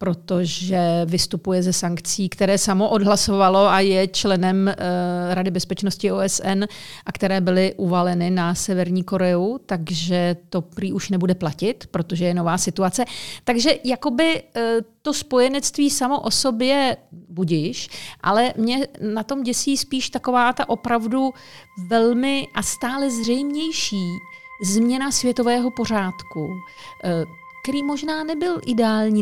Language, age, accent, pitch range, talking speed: Czech, 40-59, native, 185-250 Hz, 120 wpm